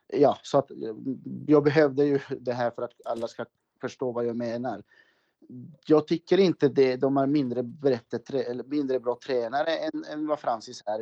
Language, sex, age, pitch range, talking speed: Swedish, male, 30-49, 125-155 Hz, 175 wpm